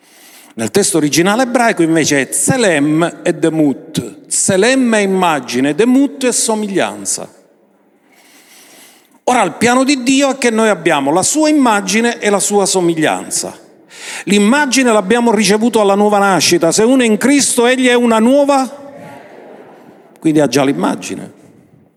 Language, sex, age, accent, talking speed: Italian, male, 50-69, native, 135 wpm